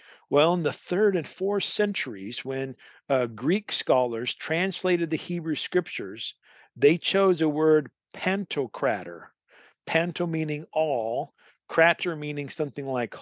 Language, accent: English, American